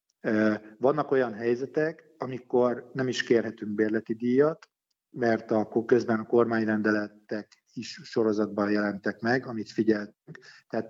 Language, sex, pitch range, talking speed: Hungarian, male, 105-130 Hz, 115 wpm